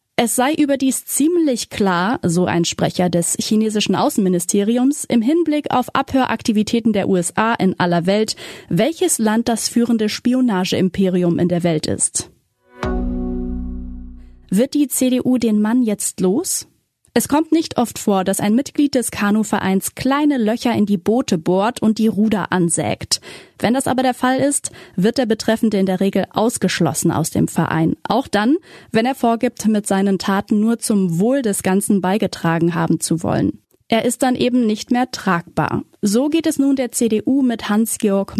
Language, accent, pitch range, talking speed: German, German, 190-245 Hz, 165 wpm